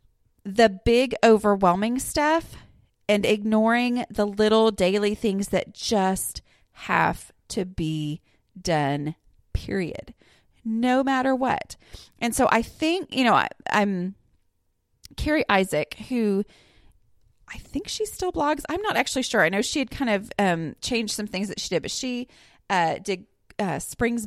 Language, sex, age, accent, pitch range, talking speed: English, female, 30-49, American, 190-250 Hz, 145 wpm